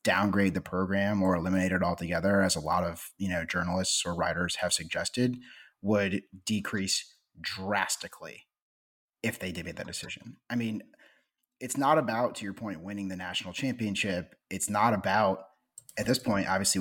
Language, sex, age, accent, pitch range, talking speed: English, male, 30-49, American, 95-120 Hz, 165 wpm